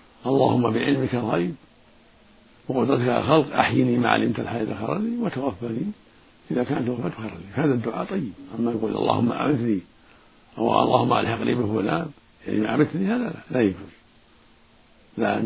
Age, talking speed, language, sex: 60-79, 130 wpm, Arabic, male